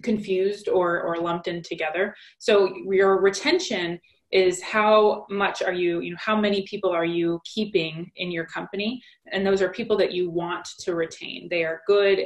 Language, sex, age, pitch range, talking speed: English, female, 20-39, 175-205 Hz, 180 wpm